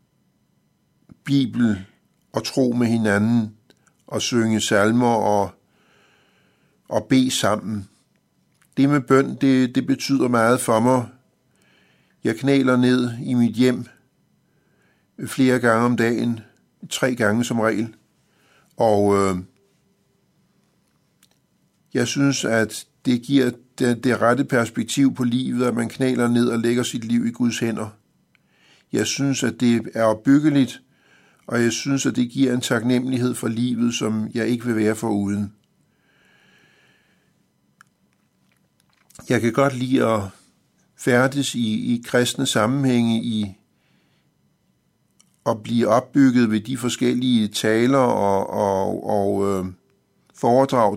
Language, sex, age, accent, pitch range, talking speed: Danish, male, 60-79, native, 110-130 Hz, 120 wpm